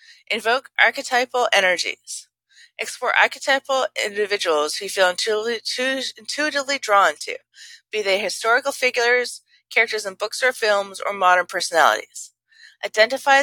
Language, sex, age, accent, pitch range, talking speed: English, female, 30-49, American, 195-275 Hz, 115 wpm